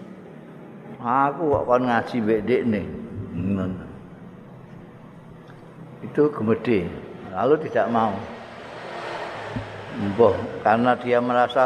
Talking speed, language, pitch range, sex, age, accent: 65 wpm, Indonesian, 120-165 Hz, male, 50-69, native